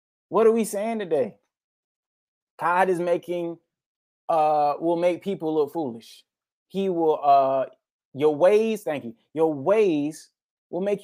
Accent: American